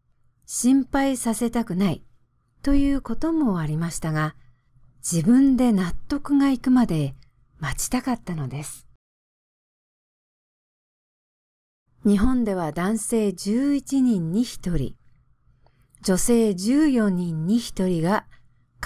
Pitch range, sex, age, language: 135-220 Hz, female, 40-59, English